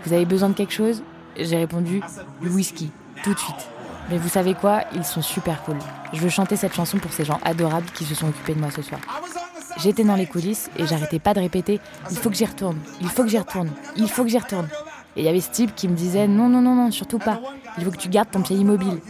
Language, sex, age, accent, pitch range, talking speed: French, female, 20-39, French, 160-205 Hz, 270 wpm